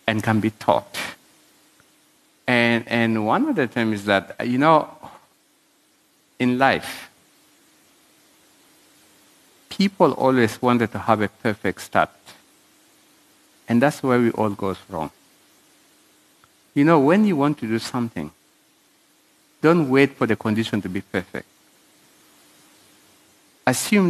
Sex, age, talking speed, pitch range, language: male, 50-69, 120 wpm, 110-150 Hz, English